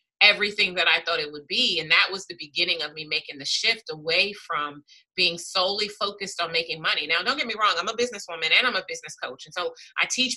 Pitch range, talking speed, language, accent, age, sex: 160-225 Hz, 245 wpm, English, American, 30-49, female